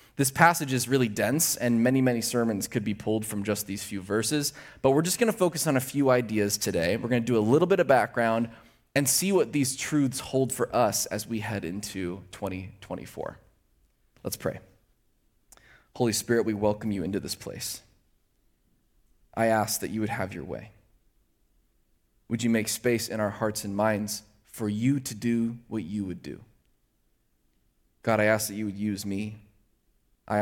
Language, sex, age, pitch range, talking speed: English, male, 20-39, 105-130 Hz, 185 wpm